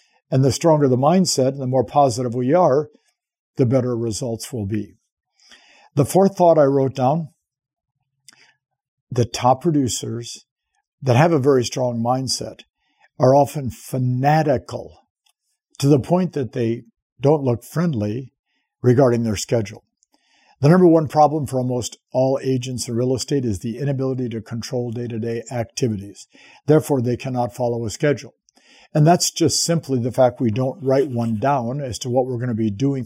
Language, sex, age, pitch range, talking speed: English, male, 50-69, 120-145 Hz, 160 wpm